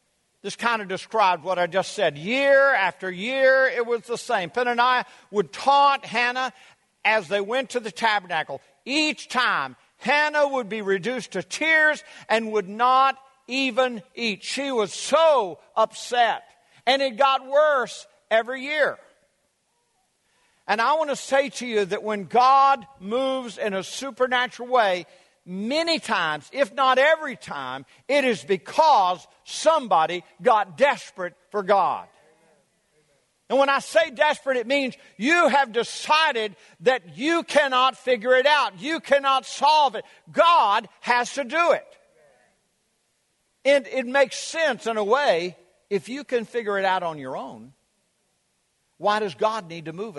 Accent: American